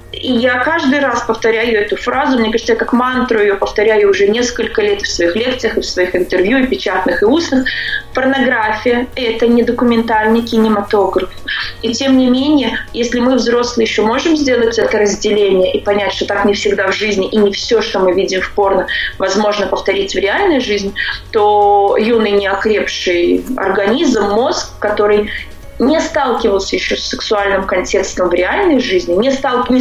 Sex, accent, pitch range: female, native, 205-250 Hz